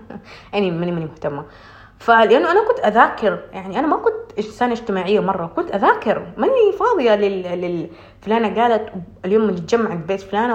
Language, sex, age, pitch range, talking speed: Arabic, female, 30-49, 200-290 Hz, 155 wpm